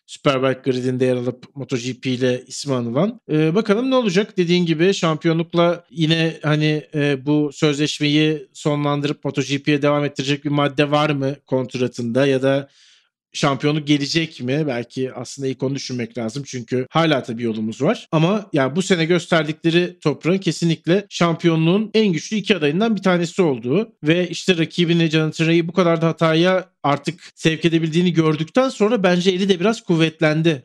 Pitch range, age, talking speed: 145-195 Hz, 40-59, 155 wpm